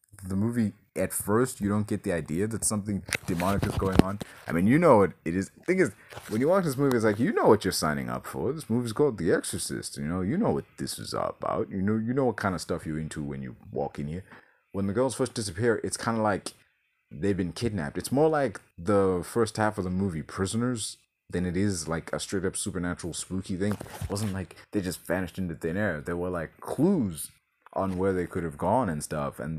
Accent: American